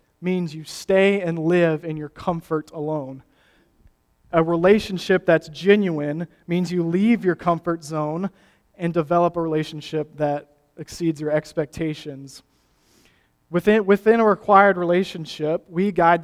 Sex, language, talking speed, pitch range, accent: male, English, 125 wpm, 155-175 Hz, American